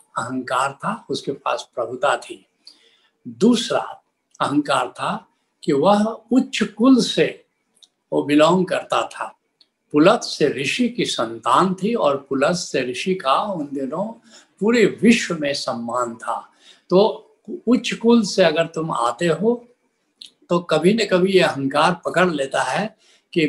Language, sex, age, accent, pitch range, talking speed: Hindi, male, 70-89, native, 145-215 Hz, 135 wpm